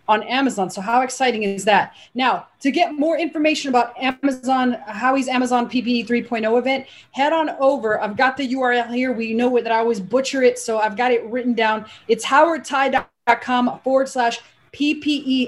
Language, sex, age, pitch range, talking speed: English, female, 30-49, 230-270 Hz, 175 wpm